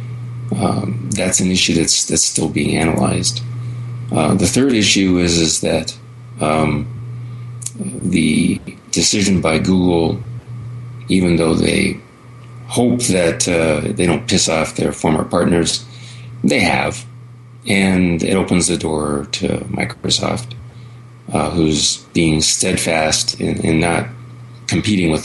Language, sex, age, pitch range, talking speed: English, male, 30-49, 90-120 Hz, 125 wpm